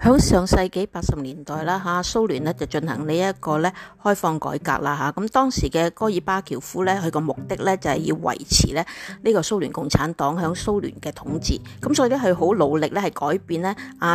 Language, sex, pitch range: Chinese, female, 150-205 Hz